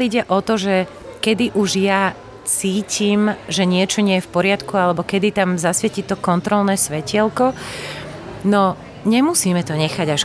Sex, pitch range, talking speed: female, 155-190 Hz, 150 wpm